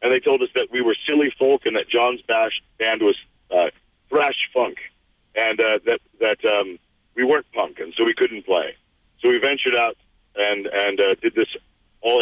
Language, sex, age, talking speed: English, male, 40-59, 200 wpm